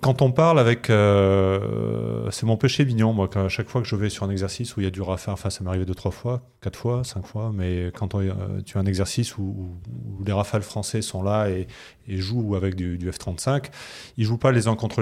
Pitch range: 95-115 Hz